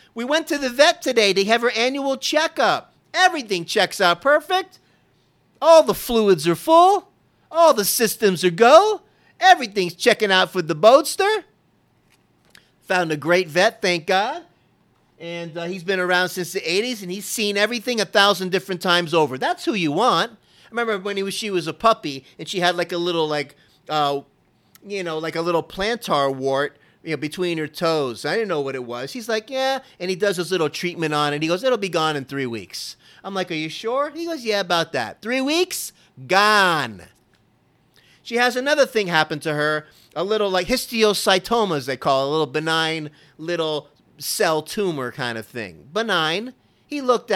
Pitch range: 160-235 Hz